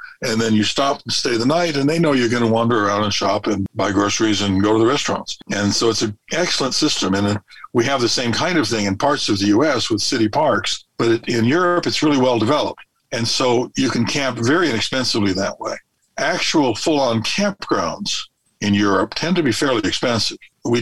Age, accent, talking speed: 60-79, American, 215 wpm